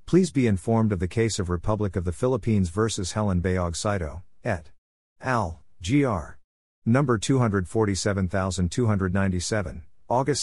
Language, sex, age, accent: English, male, 50-69, American